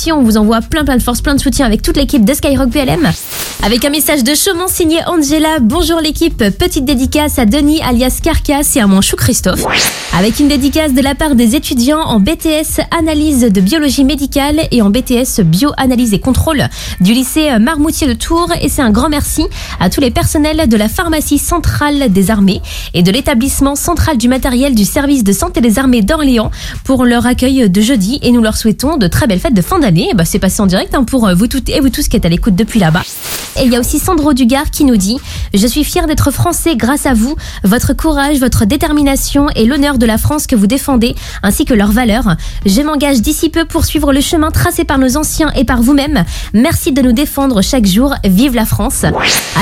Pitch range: 230-300 Hz